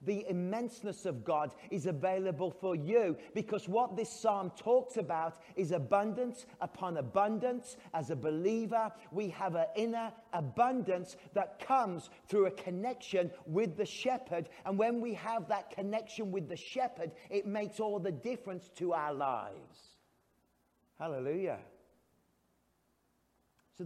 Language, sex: English, male